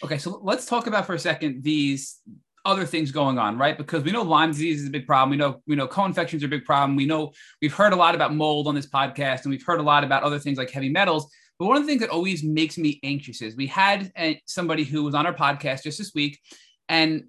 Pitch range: 145-200 Hz